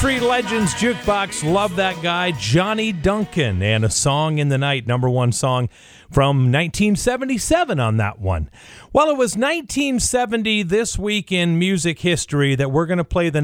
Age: 40-59